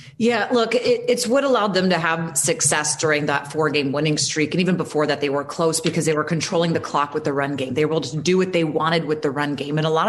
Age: 30-49